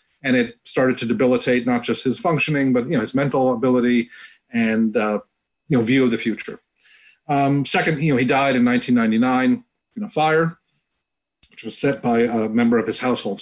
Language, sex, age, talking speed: English, male, 40-59, 190 wpm